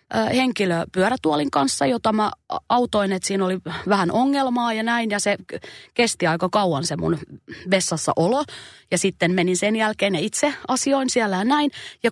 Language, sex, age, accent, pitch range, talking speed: Finnish, female, 30-49, native, 170-230 Hz, 155 wpm